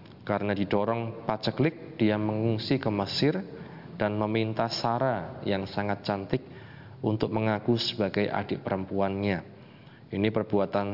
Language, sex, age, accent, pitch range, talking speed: Indonesian, male, 20-39, native, 100-115 Hz, 110 wpm